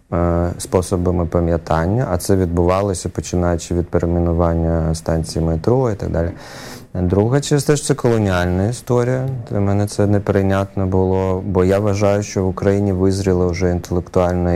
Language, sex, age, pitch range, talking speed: Ukrainian, male, 20-39, 90-110 Hz, 135 wpm